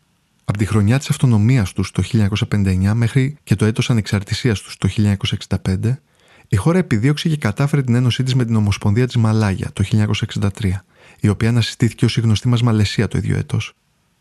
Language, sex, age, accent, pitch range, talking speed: Greek, male, 20-39, native, 105-135 Hz, 175 wpm